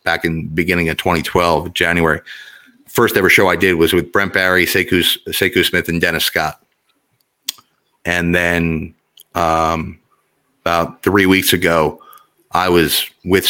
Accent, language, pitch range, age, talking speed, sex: American, English, 85-100 Hz, 30-49, 140 wpm, male